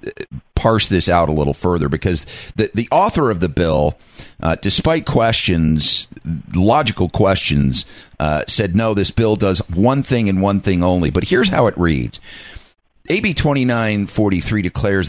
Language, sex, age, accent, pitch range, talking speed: English, male, 50-69, American, 90-120 Hz, 150 wpm